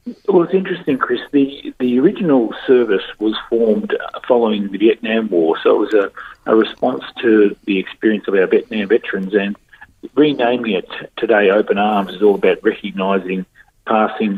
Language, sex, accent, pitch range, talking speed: English, male, Australian, 105-140 Hz, 160 wpm